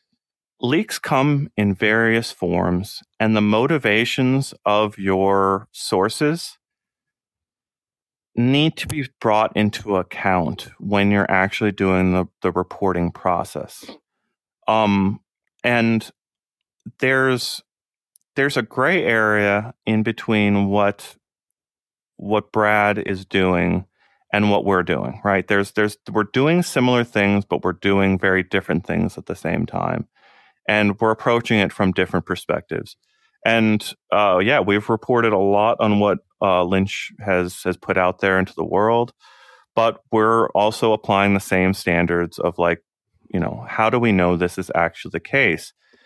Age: 40-59